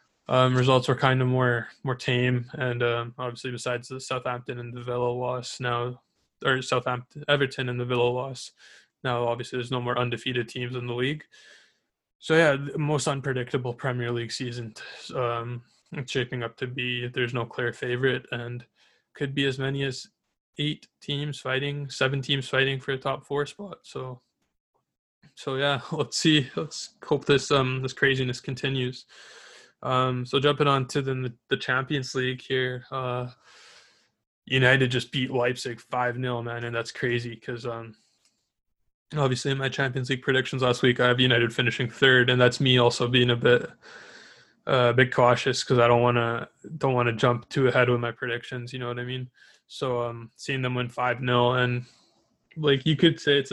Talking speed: 180 wpm